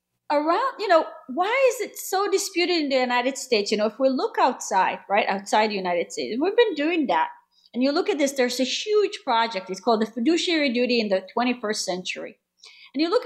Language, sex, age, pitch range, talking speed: English, female, 30-49, 235-370 Hz, 215 wpm